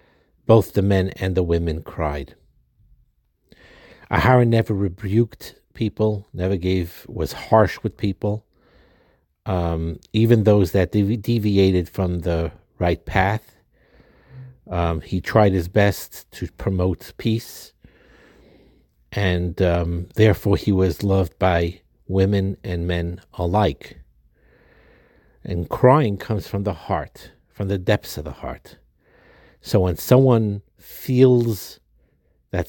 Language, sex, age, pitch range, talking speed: English, male, 60-79, 85-110 Hz, 115 wpm